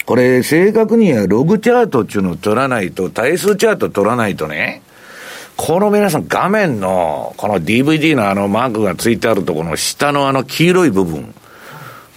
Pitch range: 115-195 Hz